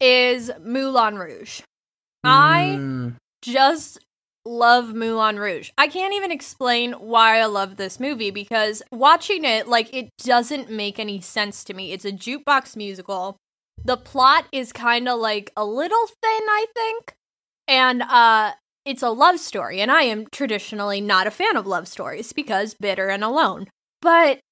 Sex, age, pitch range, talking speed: female, 10-29, 220-280 Hz, 155 wpm